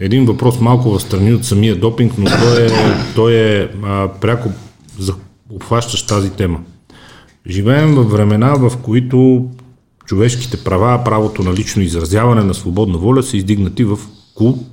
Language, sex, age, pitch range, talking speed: Bulgarian, male, 40-59, 95-120 Hz, 145 wpm